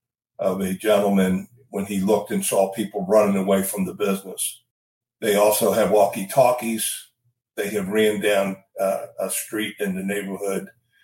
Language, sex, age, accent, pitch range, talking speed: English, male, 50-69, American, 95-115 Hz, 150 wpm